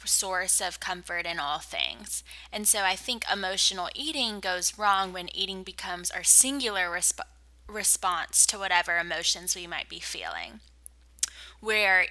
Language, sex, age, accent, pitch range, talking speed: English, female, 10-29, American, 180-220 Hz, 140 wpm